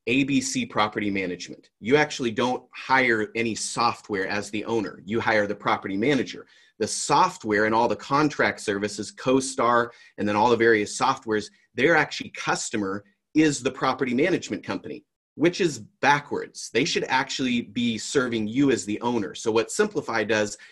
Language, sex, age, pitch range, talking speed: English, male, 30-49, 110-140 Hz, 160 wpm